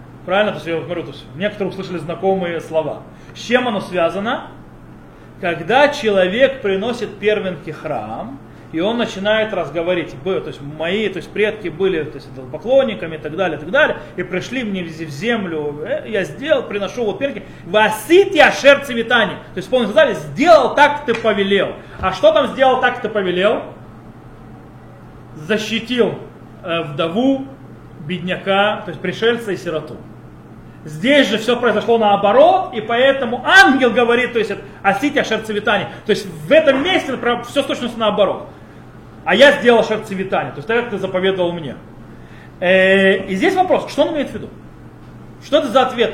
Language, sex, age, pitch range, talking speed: Russian, male, 30-49, 170-240 Hz, 160 wpm